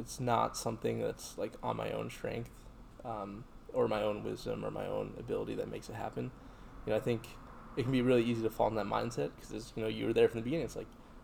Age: 20-39